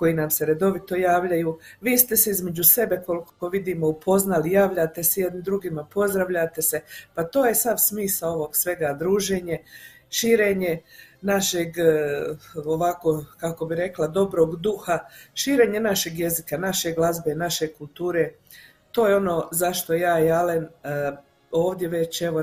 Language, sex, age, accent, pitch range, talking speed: Croatian, female, 50-69, native, 160-190 Hz, 140 wpm